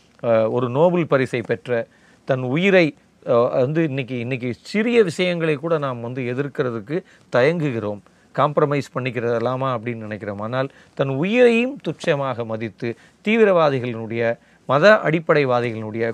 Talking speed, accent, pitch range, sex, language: 100 wpm, native, 115-160 Hz, male, Tamil